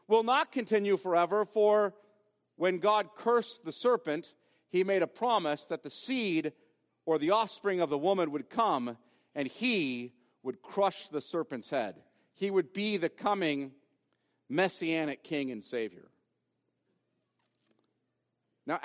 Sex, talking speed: male, 135 wpm